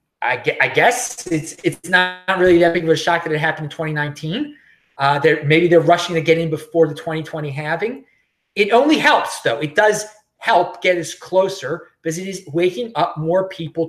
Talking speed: 195 wpm